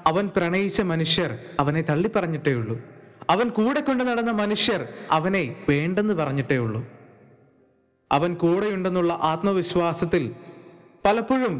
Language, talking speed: Malayalam, 100 wpm